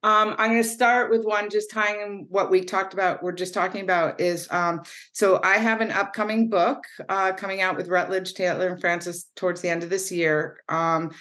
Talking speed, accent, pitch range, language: 220 wpm, American, 165-200 Hz, English